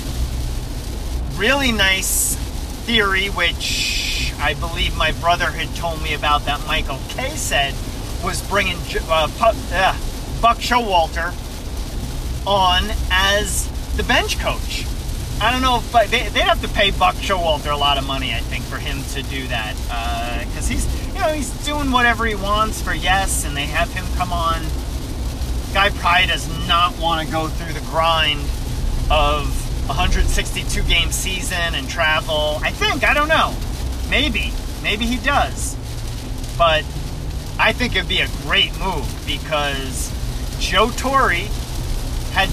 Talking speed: 150 wpm